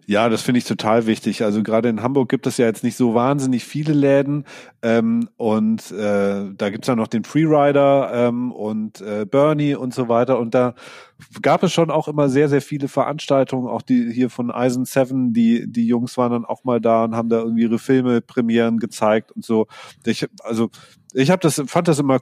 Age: 30-49